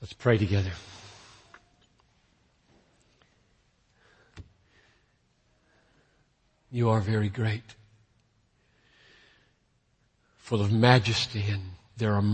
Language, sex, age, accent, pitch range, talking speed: English, male, 60-79, American, 105-120 Hz, 65 wpm